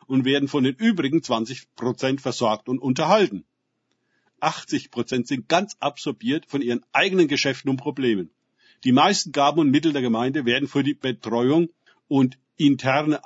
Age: 50-69